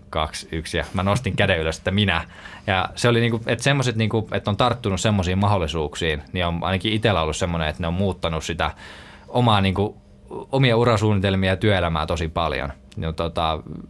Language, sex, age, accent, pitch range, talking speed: Finnish, male, 20-39, native, 85-105 Hz, 150 wpm